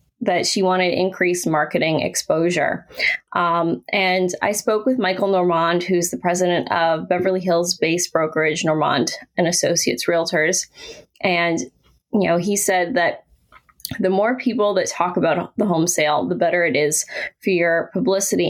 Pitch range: 165-195 Hz